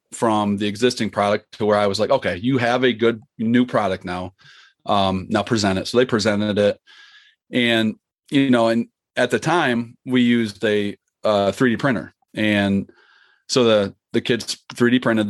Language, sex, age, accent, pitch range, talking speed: English, male, 30-49, American, 105-125 Hz, 175 wpm